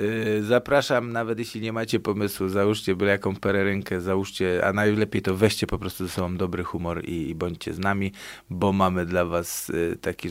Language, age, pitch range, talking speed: Polish, 20-39, 90-105 Hz, 175 wpm